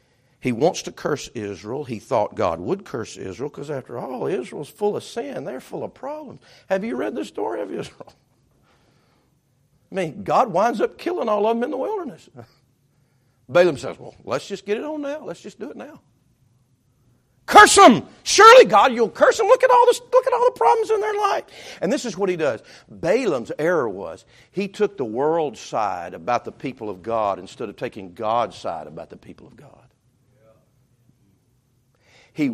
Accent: American